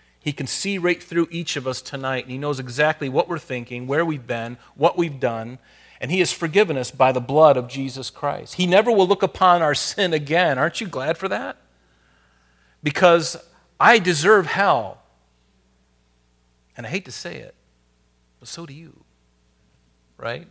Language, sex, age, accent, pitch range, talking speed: English, male, 40-59, American, 95-150 Hz, 180 wpm